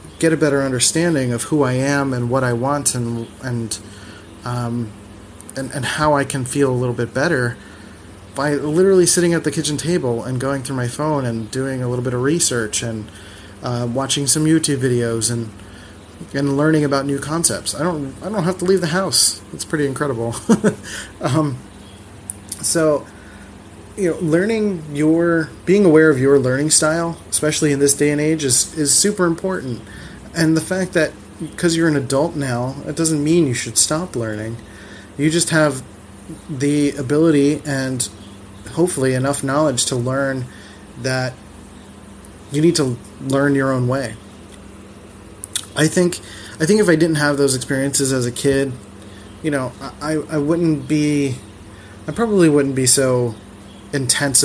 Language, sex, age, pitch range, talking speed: English, male, 30-49, 110-150 Hz, 165 wpm